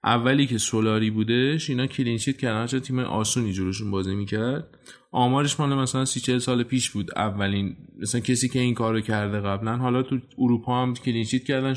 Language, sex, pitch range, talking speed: Persian, male, 110-135 Hz, 170 wpm